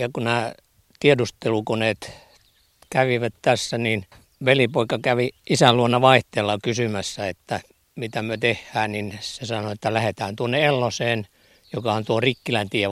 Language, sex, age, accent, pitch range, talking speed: Finnish, male, 60-79, native, 105-125 Hz, 125 wpm